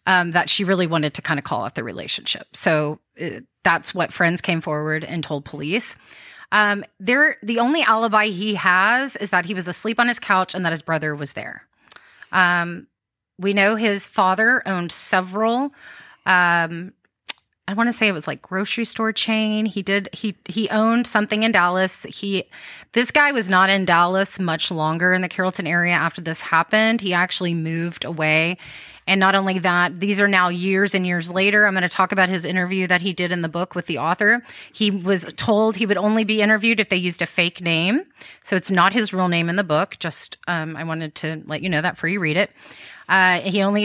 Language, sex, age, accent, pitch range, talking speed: English, female, 30-49, American, 170-210 Hz, 210 wpm